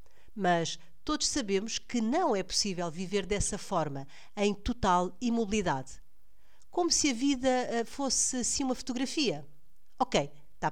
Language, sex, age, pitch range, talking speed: Portuguese, female, 50-69, 165-230 Hz, 130 wpm